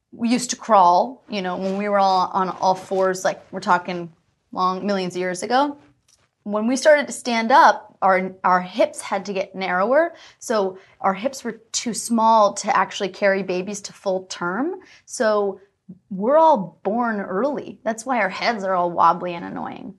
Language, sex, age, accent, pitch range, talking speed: English, female, 20-39, American, 185-235 Hz, 185 wpm